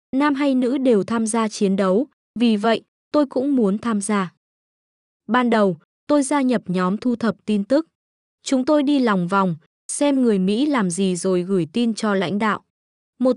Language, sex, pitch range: Vietnamese, female, 195-255 Hz